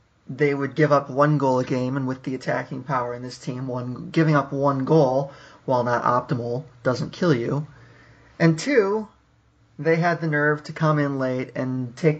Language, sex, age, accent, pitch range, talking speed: English, male, 30-49, American, 130-160 Hz, 190 wpm